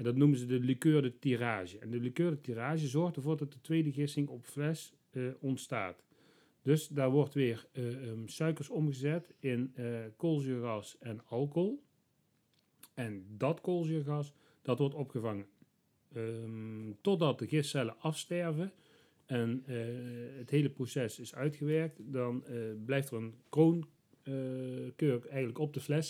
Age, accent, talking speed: 40-59, Dutch, 150 wpm